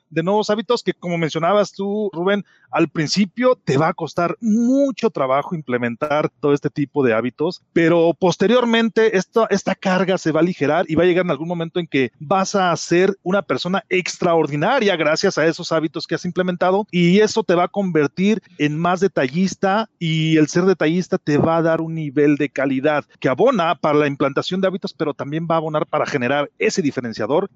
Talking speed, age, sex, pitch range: 195 wpm, 40-59, male, 150-195 Hz